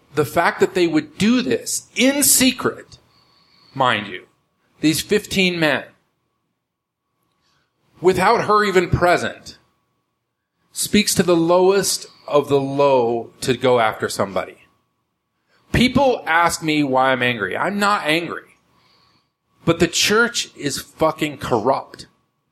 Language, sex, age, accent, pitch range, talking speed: English, male, 40-59, American, 120-180 Hz, 115 wpm